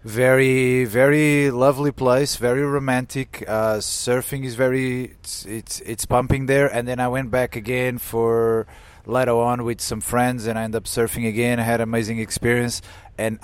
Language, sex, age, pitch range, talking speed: English, male, 30-49, 115-135 Hz, 170 wpm